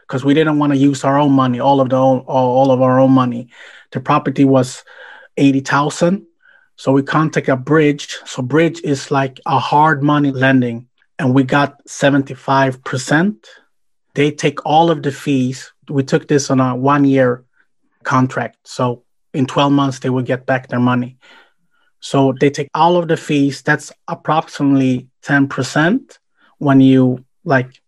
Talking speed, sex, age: 170 wpm, male, 30-49